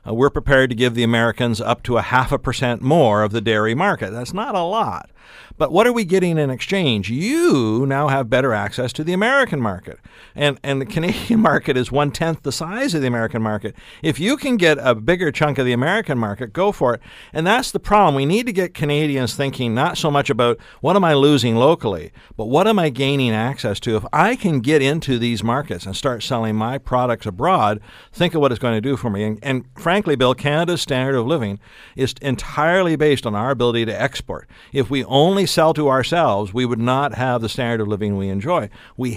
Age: 50-69